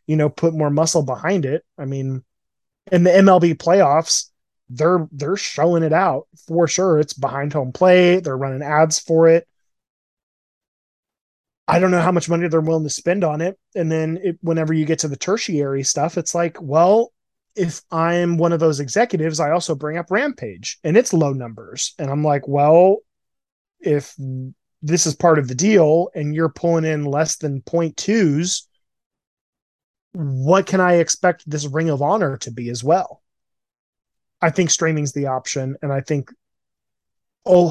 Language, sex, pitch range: English, male, 140-175 Hz